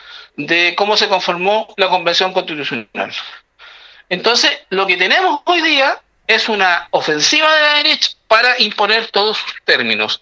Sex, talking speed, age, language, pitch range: male, 140 wpm, 50-69, Spanish, 190-270 Hz